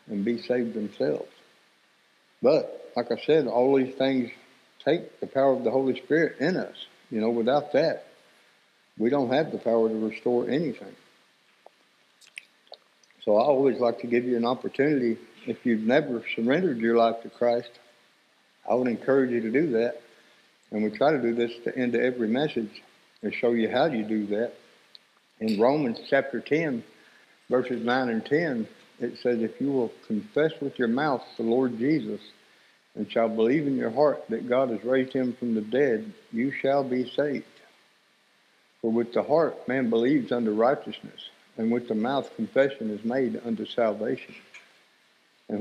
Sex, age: male, 60-79